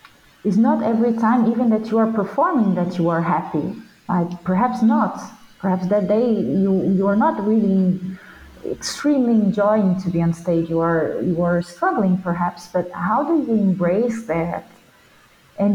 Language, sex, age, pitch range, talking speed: Spanish, female, 30-49, 185-230 Hz, 165 wpm